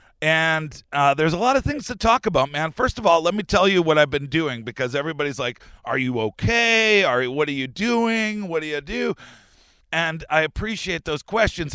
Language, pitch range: English, 115-155 Hz